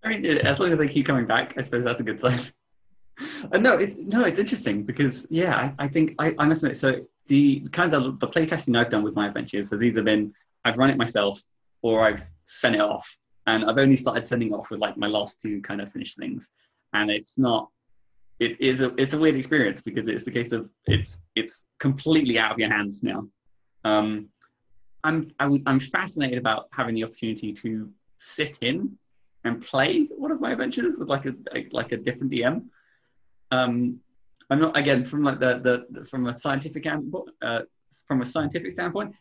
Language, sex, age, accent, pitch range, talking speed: English, male, 20-39, British, 115-150 Hz, 205 wpm